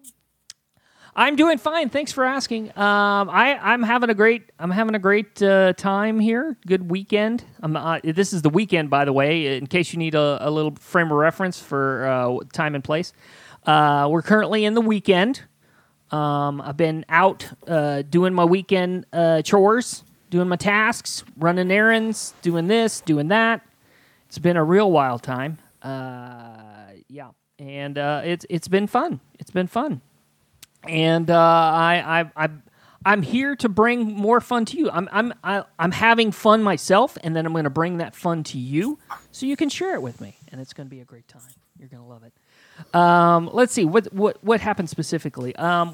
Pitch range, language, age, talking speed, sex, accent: 150-215 Hz, English, 40-59, 190 wpm, male, American